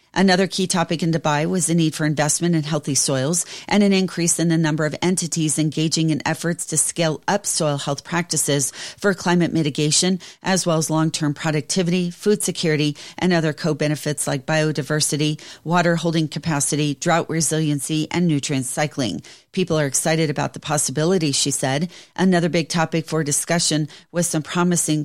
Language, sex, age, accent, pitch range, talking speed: English, female, 40-59, American, 150-175 Hz, 165 wpm